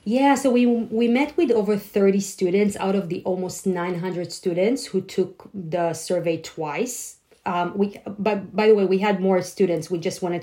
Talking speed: 190 wpm